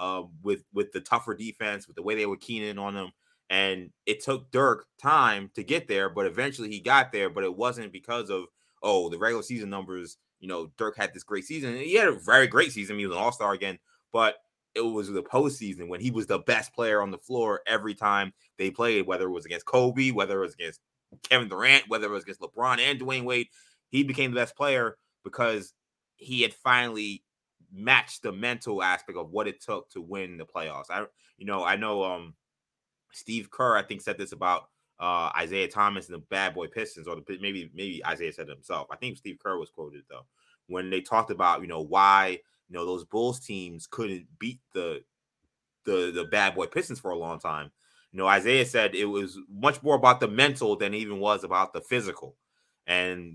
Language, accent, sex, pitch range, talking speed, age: English, American, male, 95-125 Hz, 220 wpm, 20-39